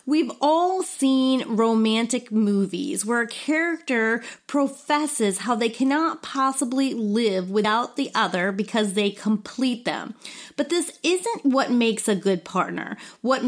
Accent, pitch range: American, 210-280 Hz